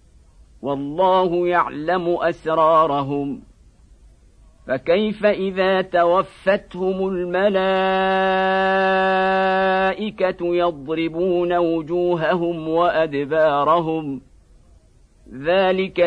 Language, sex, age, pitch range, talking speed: Arabic, male, 50-69, 155-180 Hz, 40 wpm